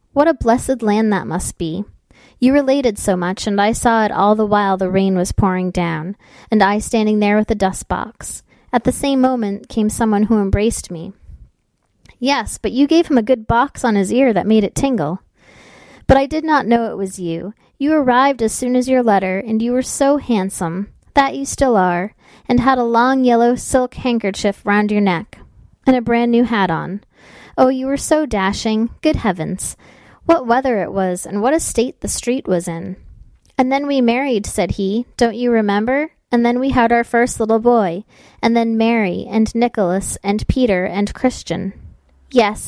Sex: female